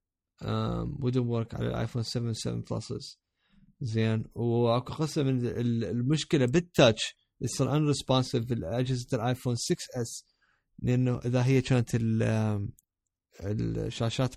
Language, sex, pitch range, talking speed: Arabic, male, 110-135 Hz, 110 wpm